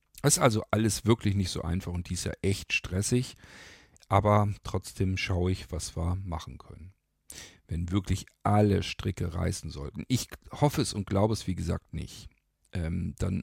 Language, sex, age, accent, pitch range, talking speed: German, male, 50-69, German, 90-105 Hz, 170 wpm